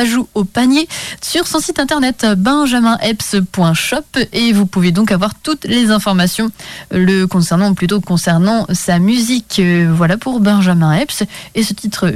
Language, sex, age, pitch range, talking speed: French, female, 20-39, 180-245 Hz, 145 wpm